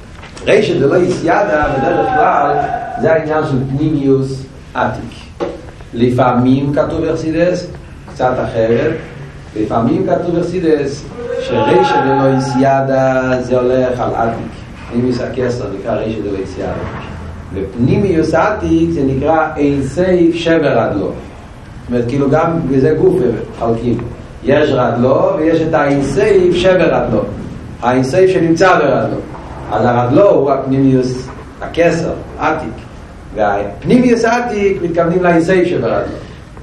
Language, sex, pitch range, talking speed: Hebrew, male, 120-160 Hz, 105 wpm